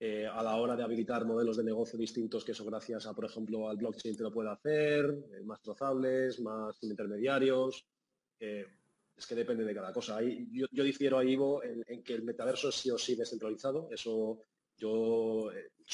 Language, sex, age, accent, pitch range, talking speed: Spanish, male, 30-49, Spanish, 115-135 Hz, 200 wpm